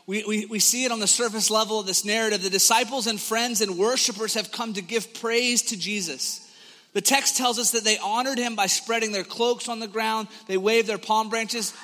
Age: 30-49